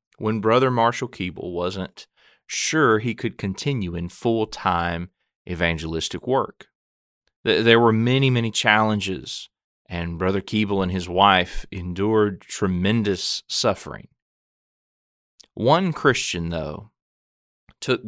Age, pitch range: 30-49, 90-120 Hz